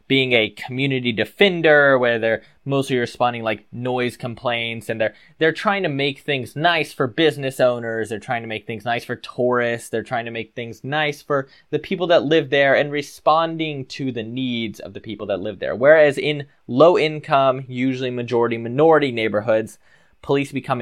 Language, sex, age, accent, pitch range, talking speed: English, male, 10-29, American, 115-145 Hz, 180 wpm